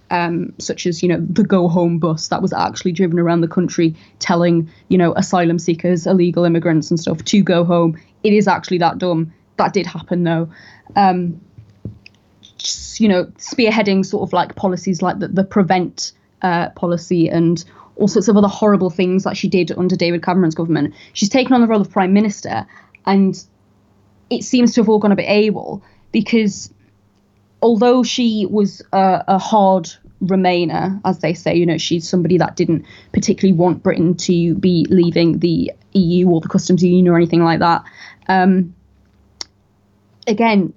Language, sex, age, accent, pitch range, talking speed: English, female, 20-39, British, 170-200 Hz, 170 wpm